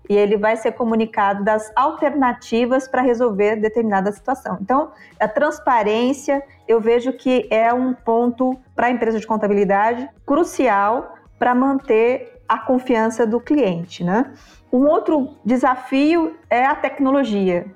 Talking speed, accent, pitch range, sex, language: 130 wpm, Brazilian, 225-280 Hz, female, Portuguese